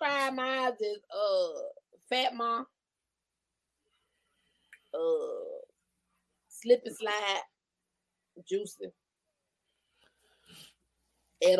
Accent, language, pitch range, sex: American, English, 235-360 Hz, female